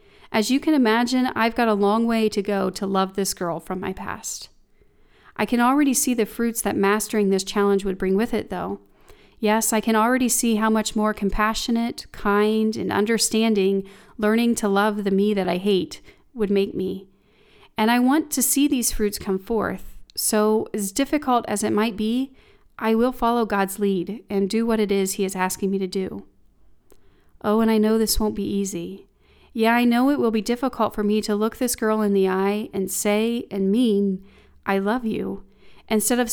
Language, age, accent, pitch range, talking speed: English, 40-59, American, 195-230 Hz, 200 wpm